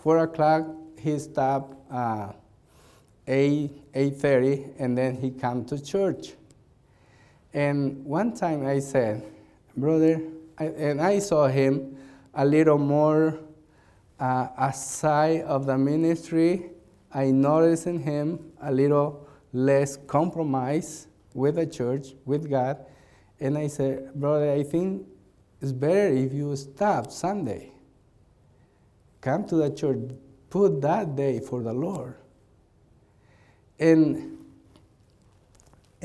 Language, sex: English, male